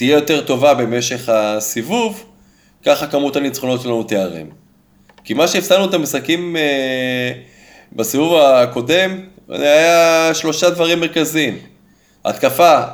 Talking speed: 100 wpm